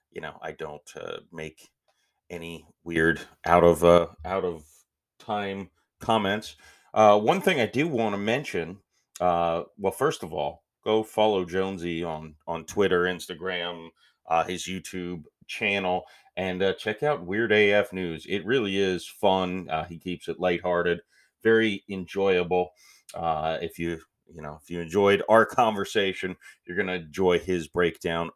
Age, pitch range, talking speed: 30-49, 85-105 Hz, 150 wpm